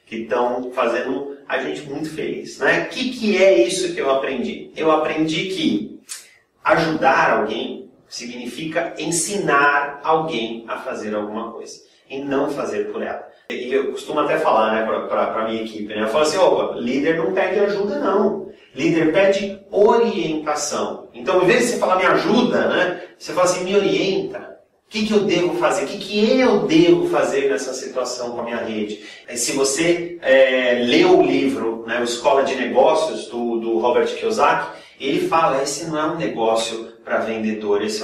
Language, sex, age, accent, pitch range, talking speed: English, male, 30-49, Brazilian, 120-195 Hz, 175 wpm